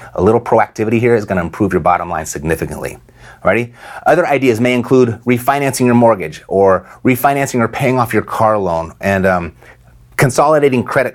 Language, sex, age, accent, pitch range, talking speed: English, male, 30-49, American, 95-125 Hz, 170 wpm